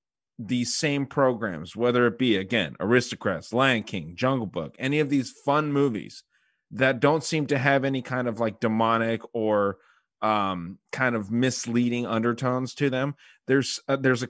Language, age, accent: English, 30-49, American